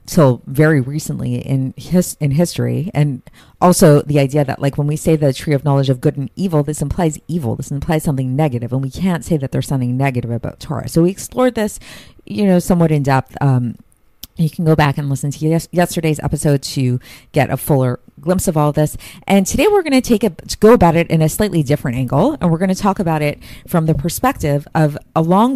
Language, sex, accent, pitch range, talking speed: English, female, American, 140-170 Hz, 230 wpm